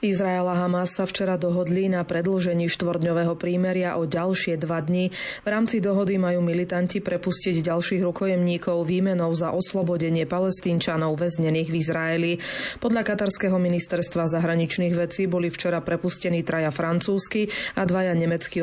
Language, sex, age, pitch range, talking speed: Slovak, female, 20-39, 170-190 Hz, 135 wpm